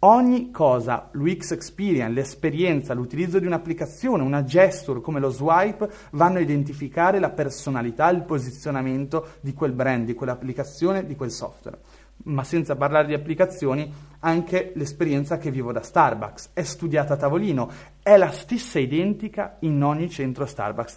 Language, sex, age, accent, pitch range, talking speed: Italian, male, 30-49, native, 135-175 Hz, 145 wpm